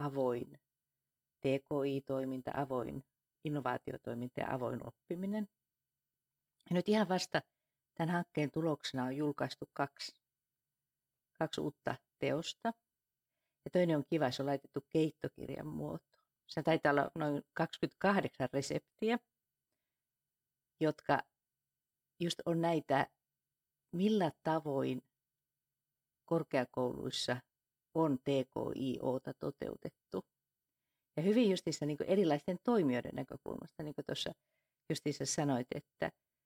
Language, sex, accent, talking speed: Finnish, female, native, 95 wpm